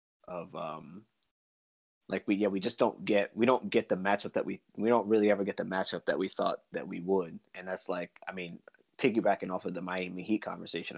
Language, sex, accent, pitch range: English, male, American, 95-105 Hz